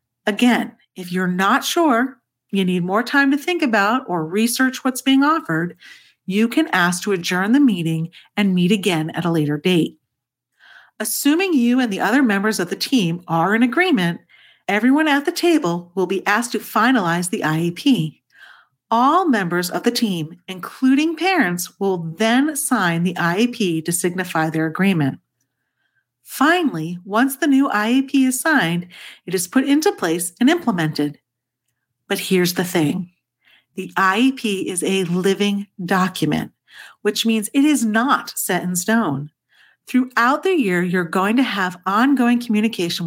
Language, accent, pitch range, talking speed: English, American, 180-260 Hz, 155 wpm